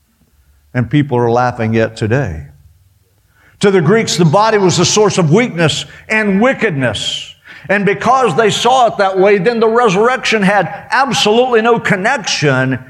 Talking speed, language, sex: 150 wpm, English, male